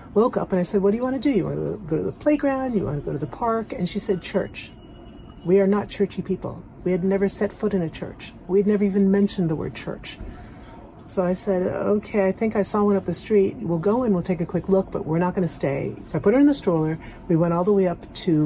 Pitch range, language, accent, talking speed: 155-205 Hz, English, American, 295 wpm